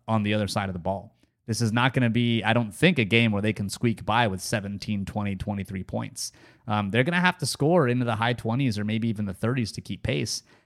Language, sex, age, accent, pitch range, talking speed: English, male, 30-49, American, 105-125 Hz, 265 wpm